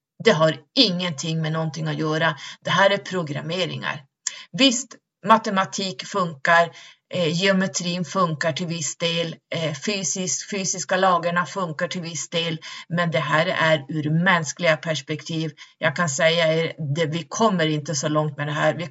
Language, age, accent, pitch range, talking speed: Swedish, 30-49, native, 155-180 Hz, 145 wpm